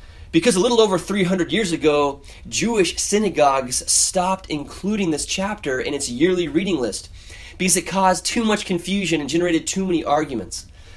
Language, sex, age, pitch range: English, male, 20-39, 120-185 Hz